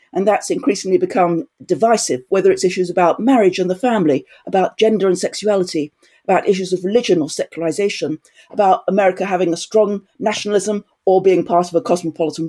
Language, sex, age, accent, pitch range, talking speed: English, female, 50-69, British, 180-245 Hz, 170 wpm